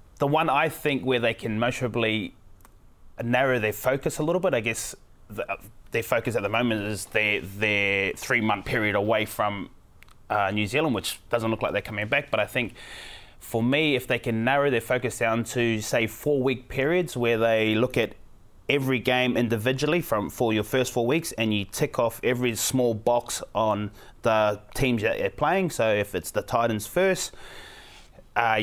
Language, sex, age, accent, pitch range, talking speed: English, male, 20-39, Australian, 110-135 Hz, 185 wpm